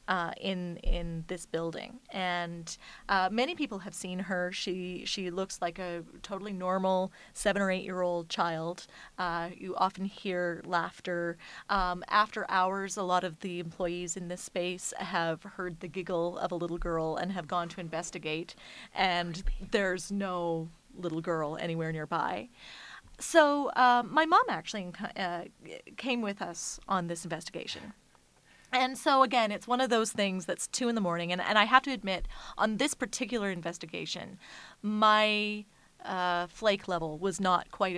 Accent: American